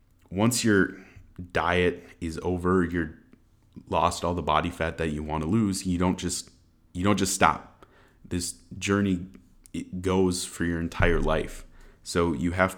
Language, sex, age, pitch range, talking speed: English, male, 30-49, 80-95 Hz, 160 wpm